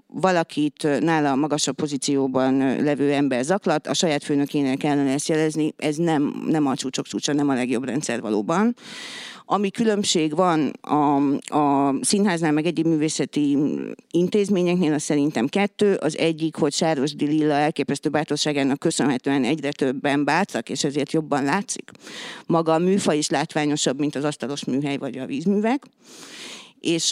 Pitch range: 140-175 Hz